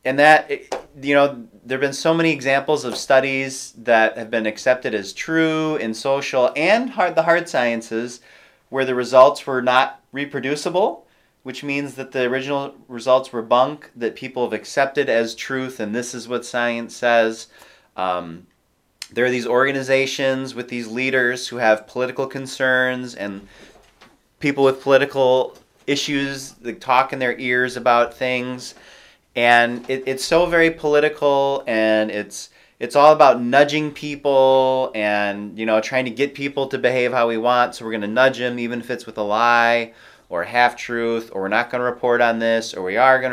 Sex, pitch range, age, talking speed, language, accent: male, 120-140 Hz, 30-49, 175 wpm, English, American